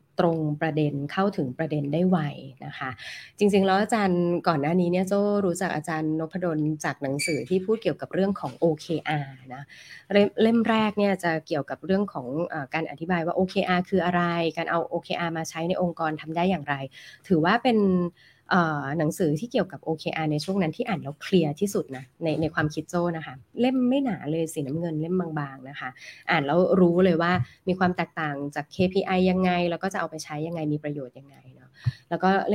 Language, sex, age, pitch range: Thai, female, 20-39, 150-190 Hz